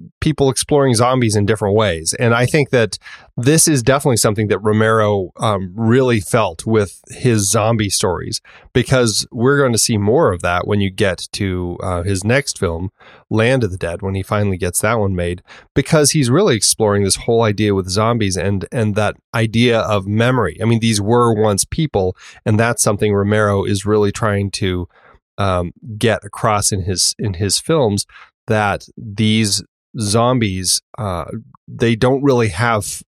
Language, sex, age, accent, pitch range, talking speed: English, male, 30-49, American, 100-125 Hz, 170 wpm